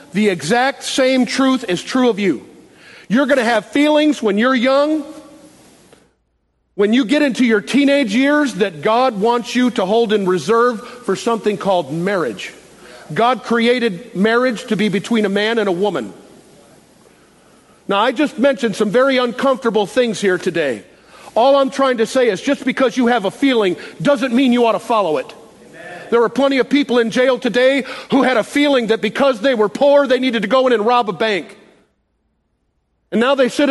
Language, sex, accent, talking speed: English, male, American, 185 wpm